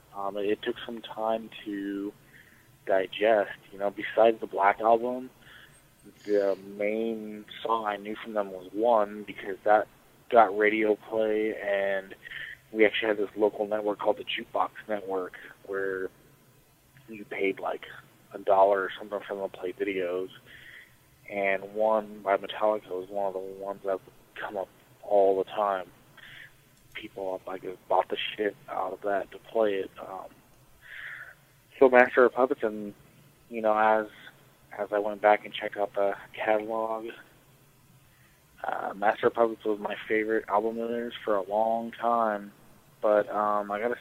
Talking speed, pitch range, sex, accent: 155 wpm, 100-115 Hz, male, American